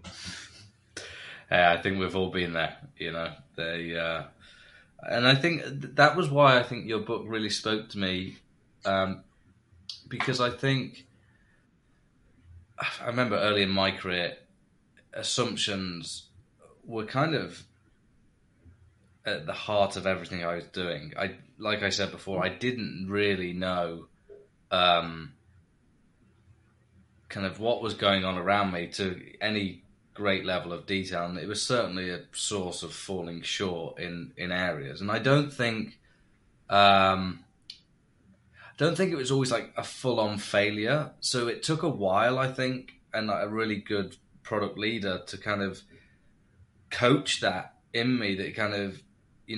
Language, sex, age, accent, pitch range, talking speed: English, male, 20-39, British, 95-115 Hz, 150 wpm